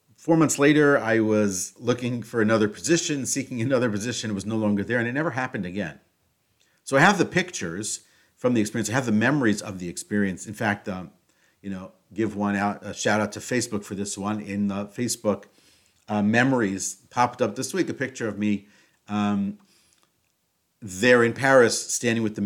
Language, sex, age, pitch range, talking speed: English, male, 50-69, 100-130 Hz, 195 wpm